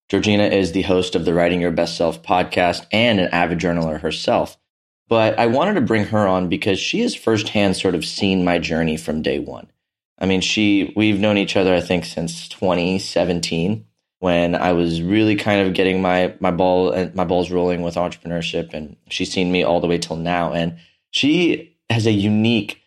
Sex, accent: male, American